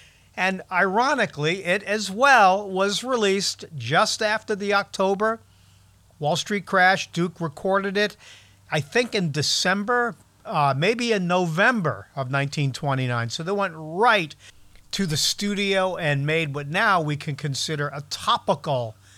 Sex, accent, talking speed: male, American, 135 wpm